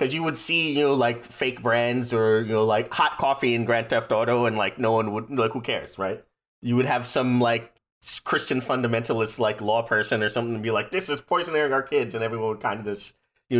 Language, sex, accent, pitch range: English, male, American, 110-130 Hz